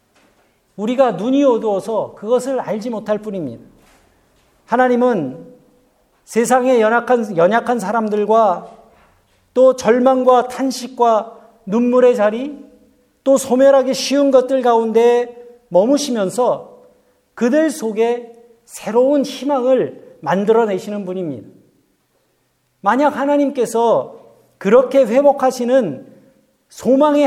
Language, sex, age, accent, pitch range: Korean, male, 50-69, native, 215-260 Hz